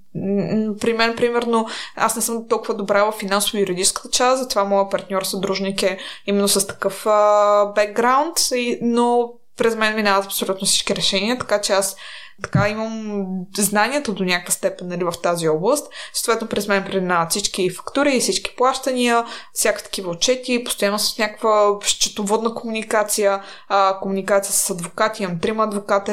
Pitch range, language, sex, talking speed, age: 190-220 Hz, Bulgarian, female, 145 wpm, 20-39